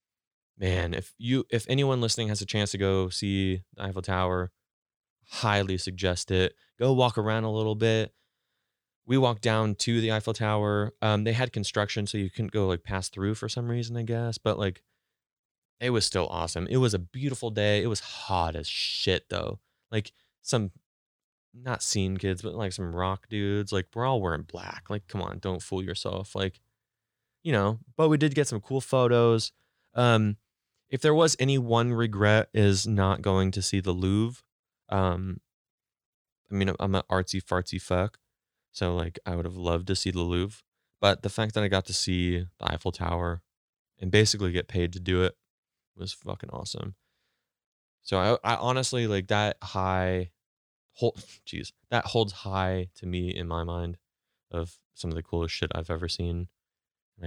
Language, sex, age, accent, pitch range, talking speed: English, male, 20-39, American, 90-115 Hz, 180 wpm